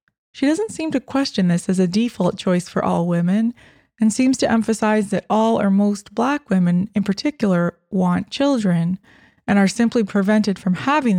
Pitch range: 180-230 Hz